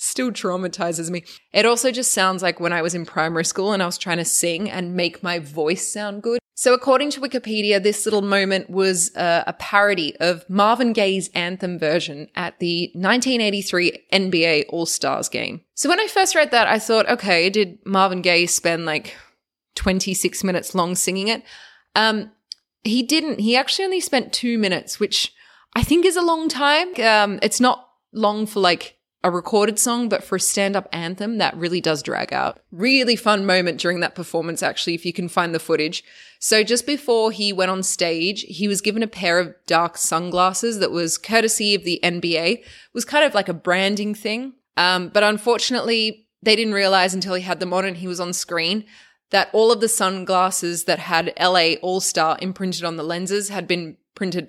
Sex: female